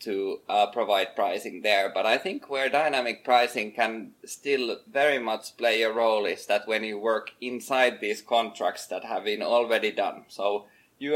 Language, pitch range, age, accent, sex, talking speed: Finnish, 110-135 Hz, 20-39, native, male, 175 wpm